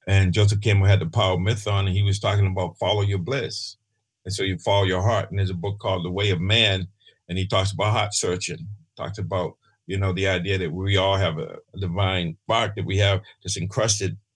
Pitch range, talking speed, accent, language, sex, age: 95-115 Hz, 235 wpm, American, English, male, 50-69